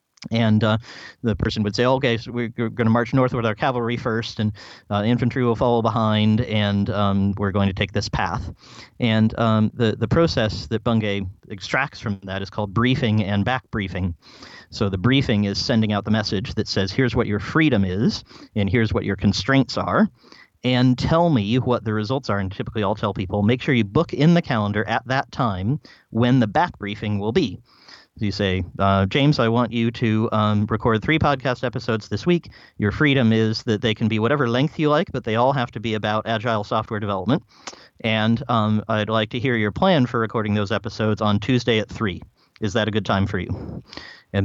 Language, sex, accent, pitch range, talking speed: English, male, American, 105-125 Hz, 210 wpm